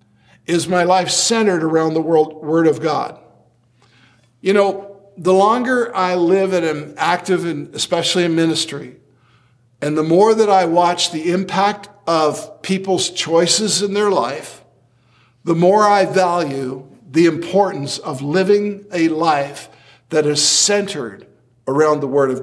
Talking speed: 140 wpm